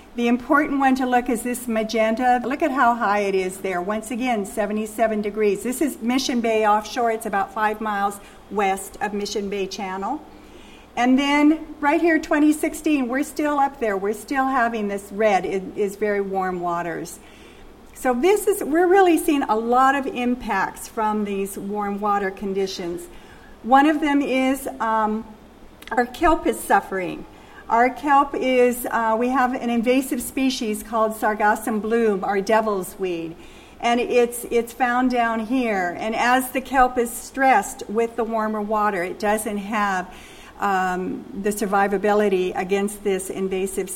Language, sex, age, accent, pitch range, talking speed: English, female, 50-69, American, 205-250 Hz, 155 wpm